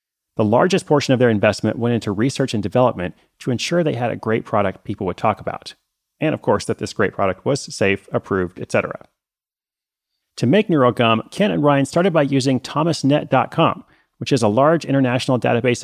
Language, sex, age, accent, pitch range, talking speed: English, male, 30-49, American, 115-145 Hz, 185 wpm